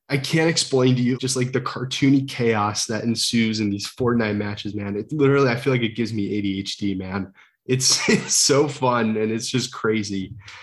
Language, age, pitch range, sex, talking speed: English, 20-39, 105-130 Hz, male, 200 wpm